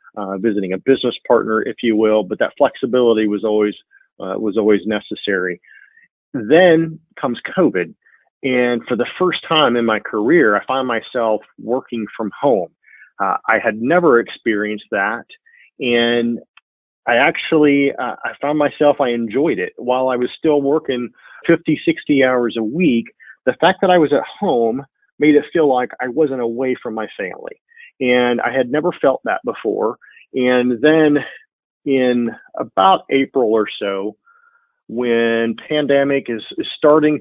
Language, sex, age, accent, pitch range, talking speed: English, male, 40-59, American, 115-140 Hz, 155 wpm